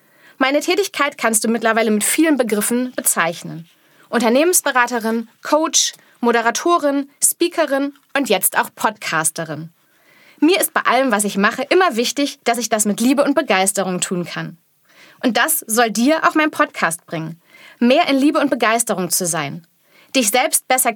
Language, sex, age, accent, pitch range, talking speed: German, female, 30-49, German, 190-270 Hz, 150 wpm